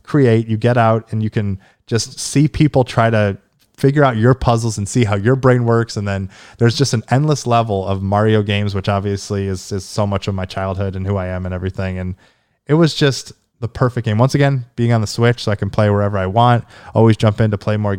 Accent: American